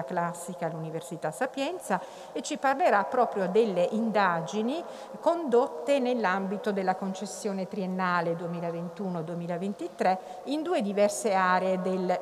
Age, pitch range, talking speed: 50-69, 180-225 Hz, 100 wpm